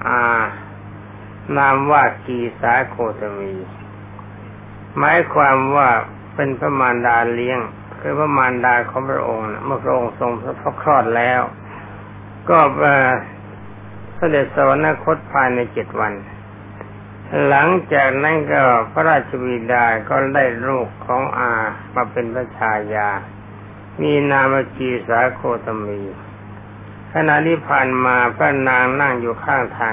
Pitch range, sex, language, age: 105-135 Hz, male, Thai, 60-79